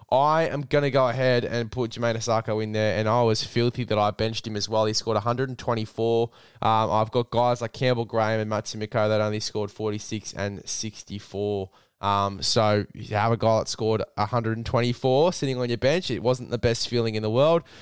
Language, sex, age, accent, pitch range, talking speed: English, male, 10-29, Australian, 110-130 Hz, 205 wpm